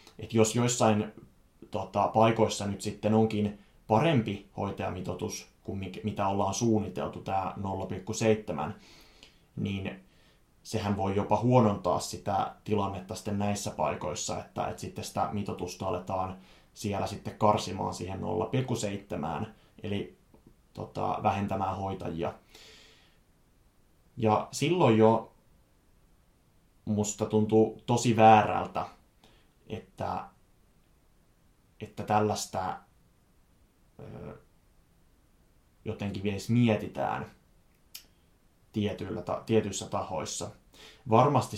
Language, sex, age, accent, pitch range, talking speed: Finnish, male, 20-39, native, 95-110 Hz, 80 wpm